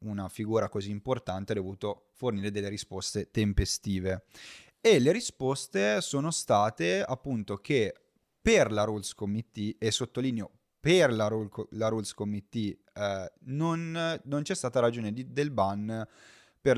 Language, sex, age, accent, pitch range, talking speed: Italian, male, 30-49, native, 105-140 Hz, 130 wpm